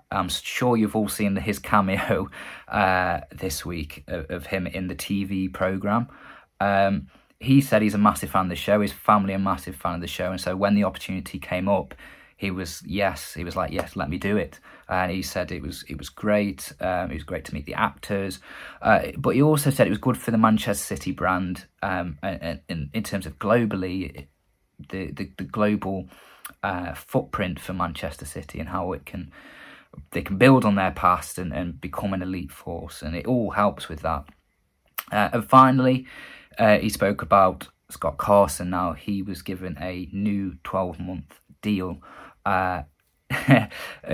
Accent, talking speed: British, 190 wpm